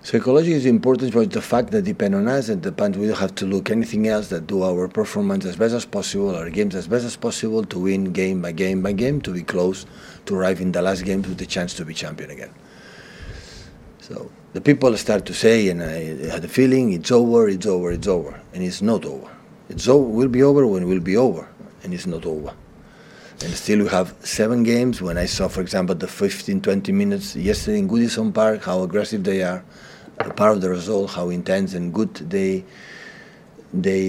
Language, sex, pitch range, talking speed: English, male, 95-130 Hz, 220 wpm